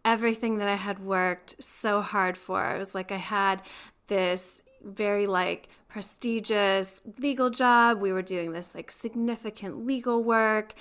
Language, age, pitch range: English, 10-29, 190-235 Hz